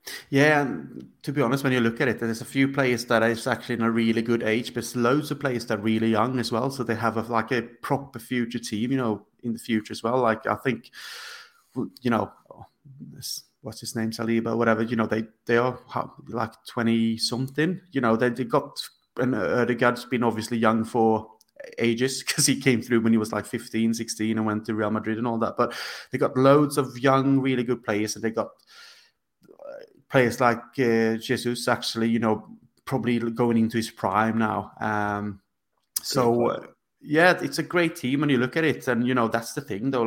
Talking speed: 215 wpm